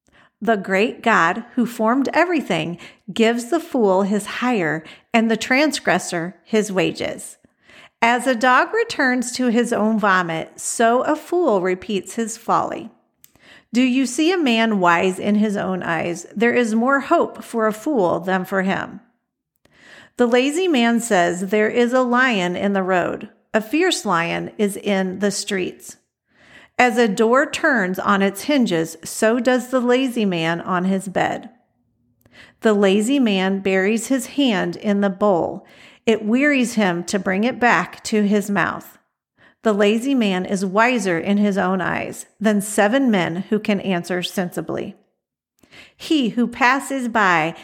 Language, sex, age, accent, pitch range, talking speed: English, female, 50-69, American, 190-245 Hz, 155 wpm